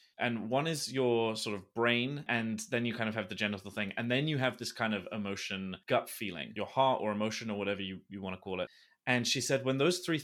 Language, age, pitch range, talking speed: English, 20-39, 110-160 Hz, 260 wpm